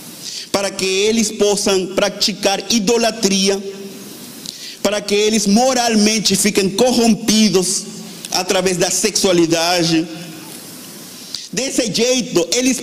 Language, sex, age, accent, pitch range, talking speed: Portuguese, male, 50-69, Venezuelan, 145-240 Hz, 85 wpm